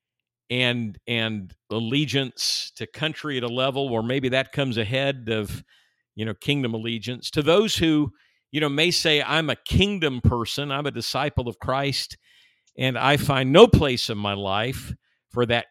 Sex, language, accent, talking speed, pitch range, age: male, English, American, 170 wpm, 115-150 Hz, 50-69